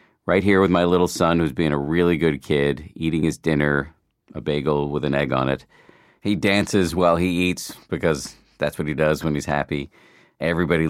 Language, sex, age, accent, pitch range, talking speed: English, male, 50-69, American, 75-100 Hz, 200 wpm